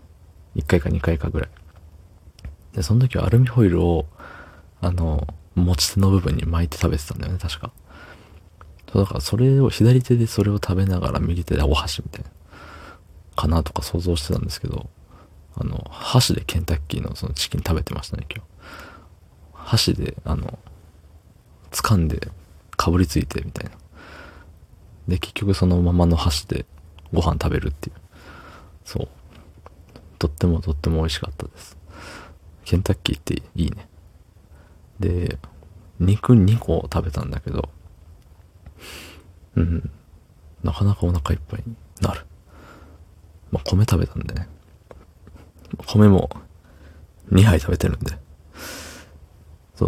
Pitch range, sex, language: 80-95 Hz, male, Japanese